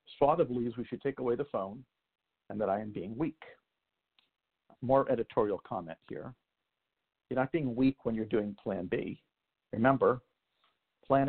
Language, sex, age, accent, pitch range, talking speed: English, male, 50-69, American, 115-130 Hz, 160 wpm